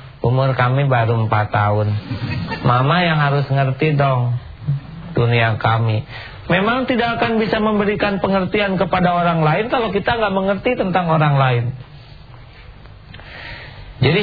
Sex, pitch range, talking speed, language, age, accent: male, 135-200 Hz, 120 wpm, English, 40-59, Indonesian